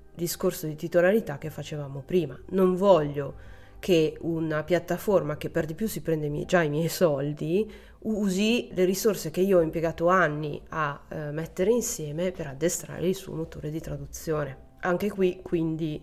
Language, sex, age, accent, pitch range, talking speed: Italian, female, 30-49, native, 155-185 Hz, 165 wpm